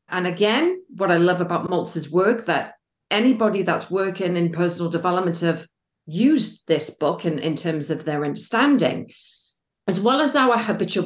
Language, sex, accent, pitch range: English, female, British, 165-235 Hz